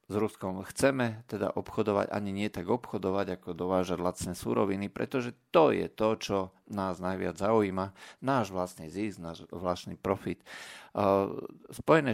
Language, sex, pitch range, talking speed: Slovak, male, 90-105 Hz, 145 wpm